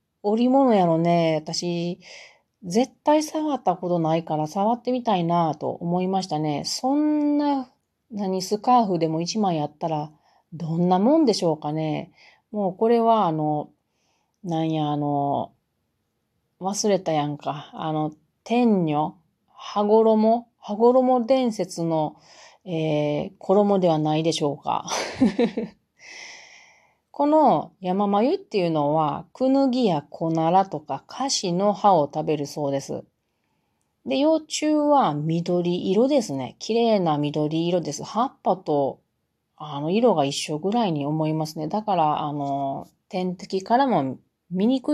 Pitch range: 155-230 Hz